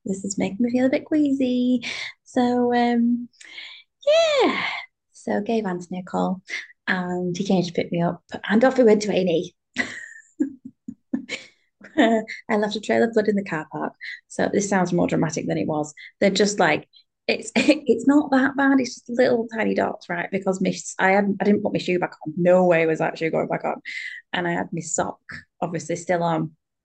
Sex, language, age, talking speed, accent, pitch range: female, English, 20-39, 190 wpm, British, 170-225 Hz